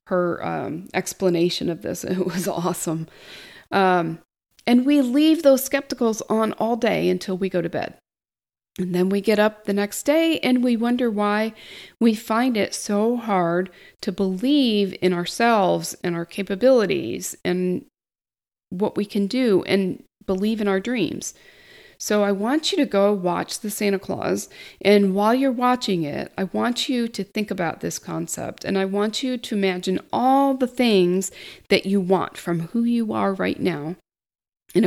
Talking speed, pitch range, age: 170 wpm, 185-240 Hz, 40-59